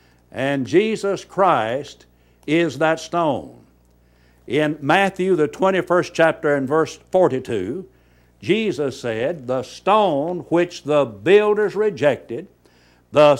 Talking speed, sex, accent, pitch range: 105 wpm, male, American, 125-185 Hz